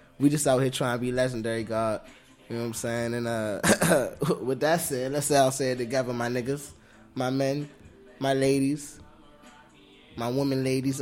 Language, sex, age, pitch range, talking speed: English, male, 20-39, 115-140 Hz, 185 wpm